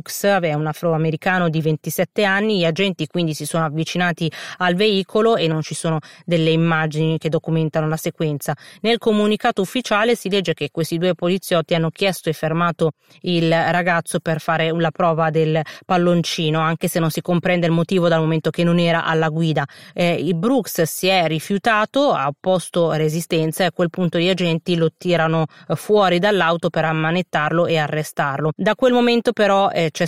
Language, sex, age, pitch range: Italian, female, 30-49, 160-185 Hz